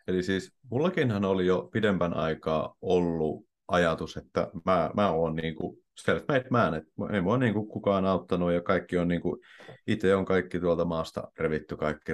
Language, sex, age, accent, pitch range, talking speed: Finnish, male, 30-49, native, 80-95 Hz, 170 wpm